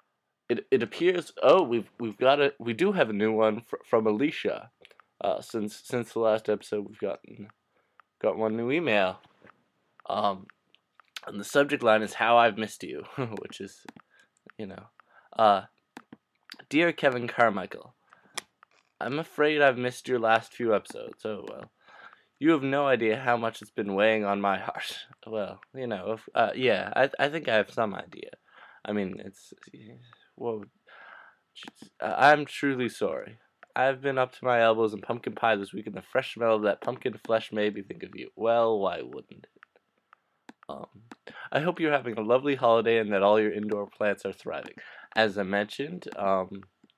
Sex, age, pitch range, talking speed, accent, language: male, 20-39, 105-125 Hz, 180 wpm, American, English